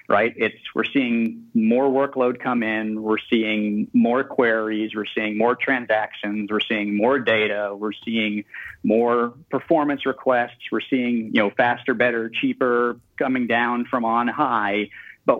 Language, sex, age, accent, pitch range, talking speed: English, male, 40-59, American, 115-140 Hz, 150 wpm